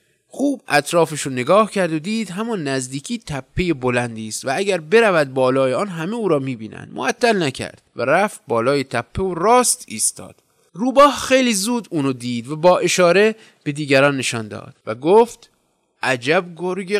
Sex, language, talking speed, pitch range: male, Persian, 160 wpm, 125-195 Hz